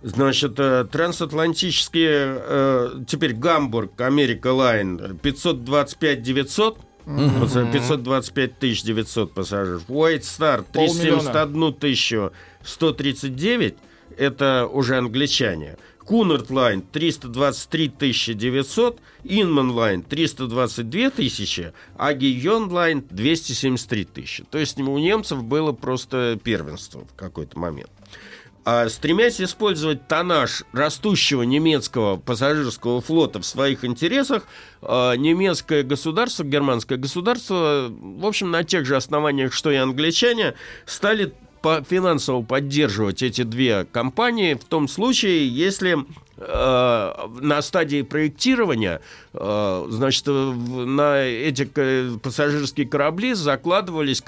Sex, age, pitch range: male, 50-69, 125-160 Hz